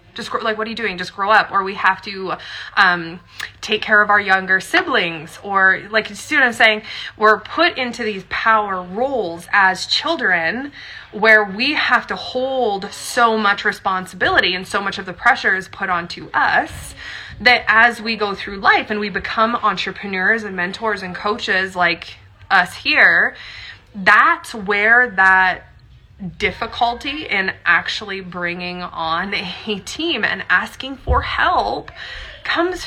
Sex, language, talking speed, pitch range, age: female, English, 155 wpm, 185-235 Hz, 20-39